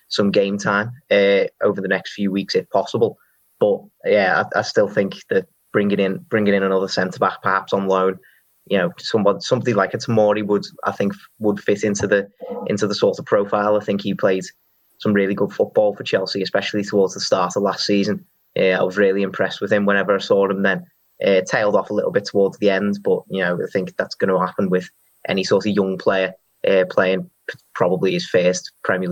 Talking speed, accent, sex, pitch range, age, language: 215 wpm, British, male, 95-105 Hz, 20-39, English